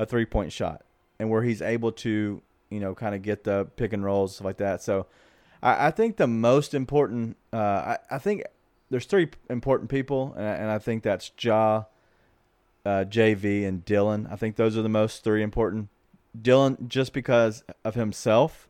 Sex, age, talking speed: male, 30-49, 185 wpm